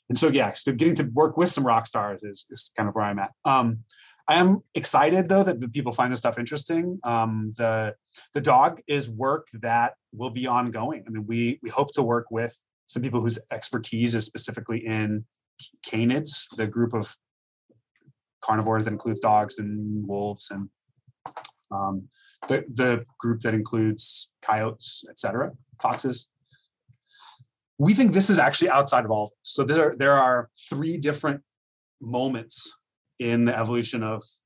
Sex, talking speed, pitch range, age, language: male, 165 wpm, 110-135 Hz, 30-49, English